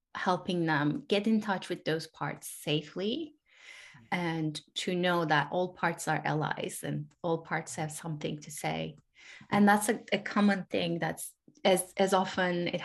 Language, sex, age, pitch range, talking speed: English, female, 20-39, 175-210 Hz, 165 wpm